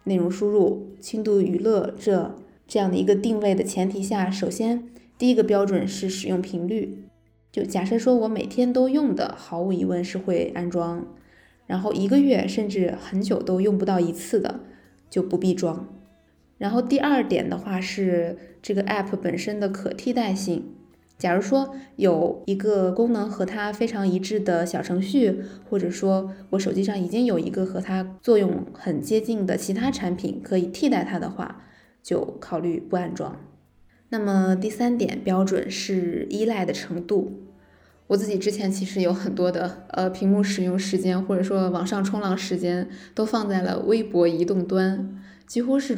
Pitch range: 180-215 Hz